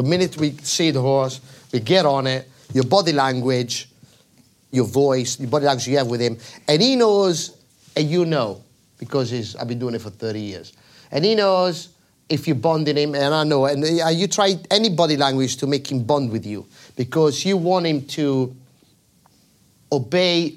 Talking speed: 195 wpm